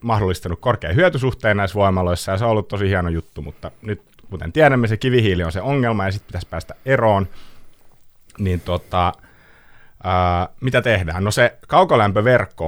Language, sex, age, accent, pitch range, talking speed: Finnish, male, 30-49, native, 85-110 Hz, 160 wpm